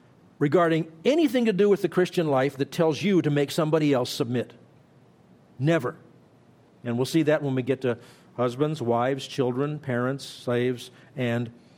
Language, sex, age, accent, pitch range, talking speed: English, male, 50-69, American, 130-175 Hz, 160 wpm